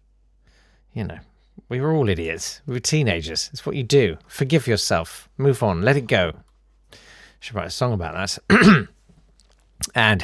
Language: English